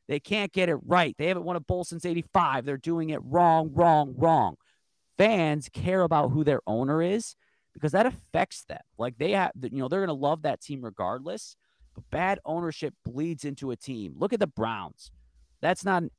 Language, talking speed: English, 205 wpm